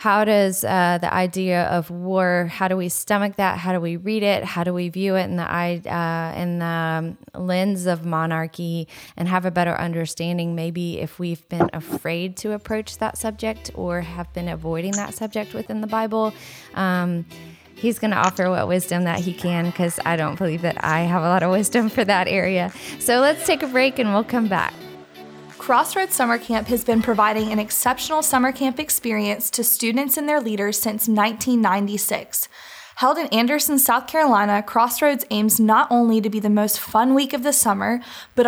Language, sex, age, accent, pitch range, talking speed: English, female, 20-39, American, 185-240 Hz, 195 wpm